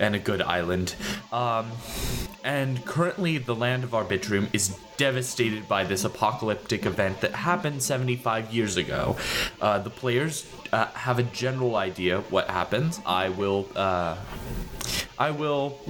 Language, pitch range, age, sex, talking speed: English, 90-125 Hz, 20-39, male, 145 wpm